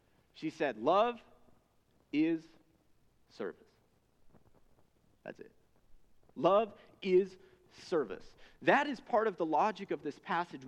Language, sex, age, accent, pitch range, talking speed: English, male, 30-49, American, 195-260 Hz, 105 wpm